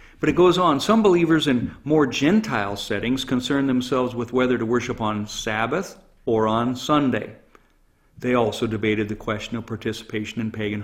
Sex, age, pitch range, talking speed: male, 50-69, 110-145 Hz, 165 wpm